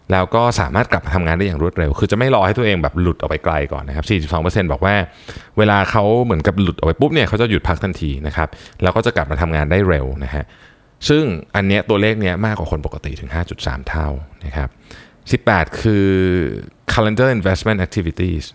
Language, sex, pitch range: Thai, male, 80-105 Hz